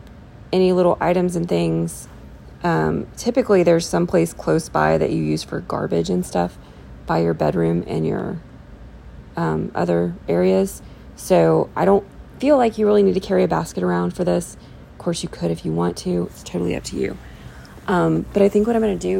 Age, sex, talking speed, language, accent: 30-49, female, 195 wpm, English, American